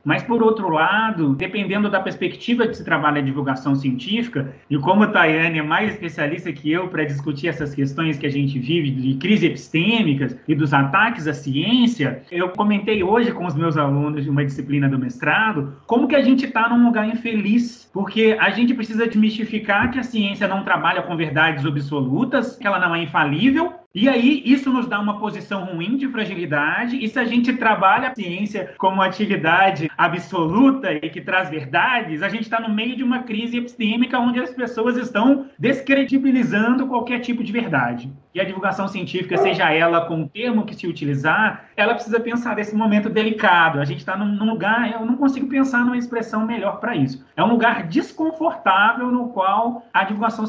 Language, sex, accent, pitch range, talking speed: Portuguese, male, Brazilian, 165-235 Hz, 190 wpm